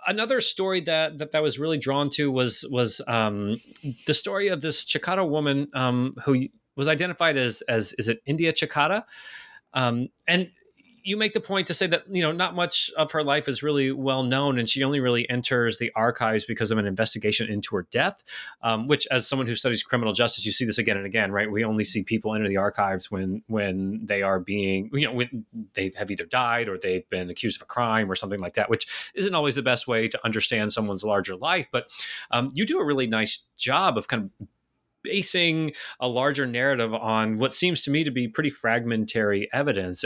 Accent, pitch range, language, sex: American, 110-145 Hz, English, male